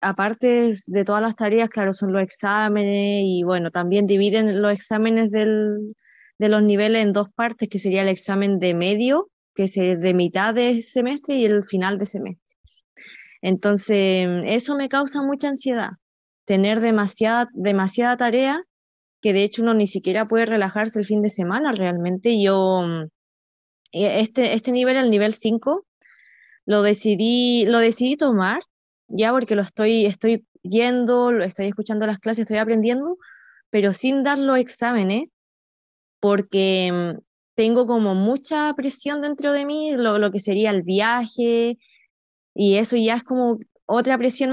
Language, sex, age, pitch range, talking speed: Spanish, female, 20-39, 200-245 Hz, 150 wpm